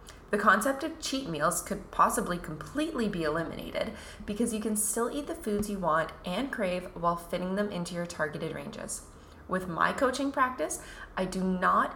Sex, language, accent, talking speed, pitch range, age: female, English, American, 175 wpm, 160-210 Hz, 20-39